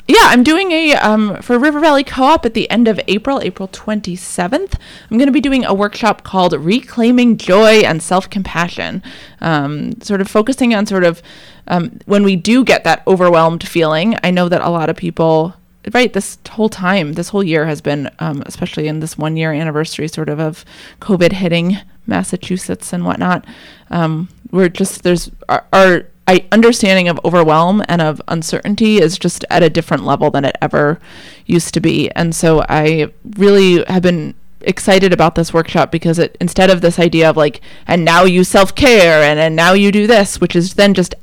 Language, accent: English, American